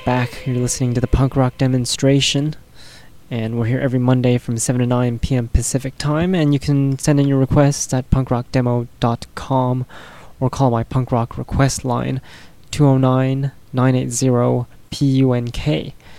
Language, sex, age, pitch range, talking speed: English, male, 20-39, 120-135 Hz, 135 wpm